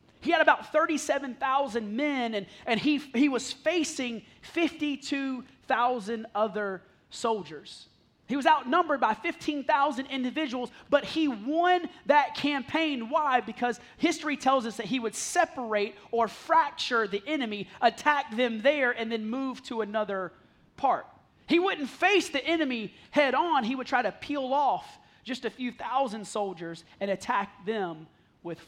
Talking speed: 145 wpm